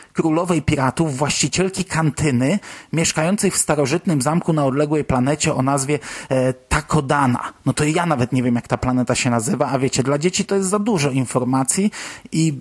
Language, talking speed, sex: Polish, 170 wpm, male